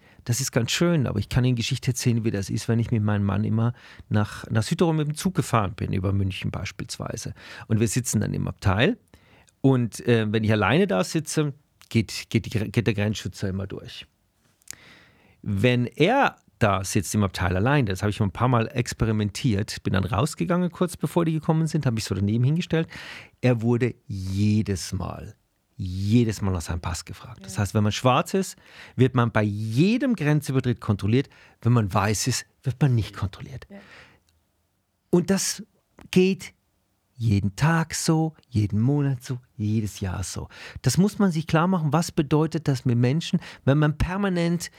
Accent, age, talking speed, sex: German, 40-59, 175 wpm, male